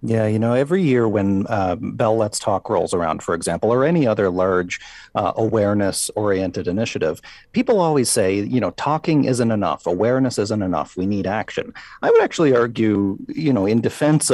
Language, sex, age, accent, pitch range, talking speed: English, male, 40-59, American, 100-135 Hz, 185 wpm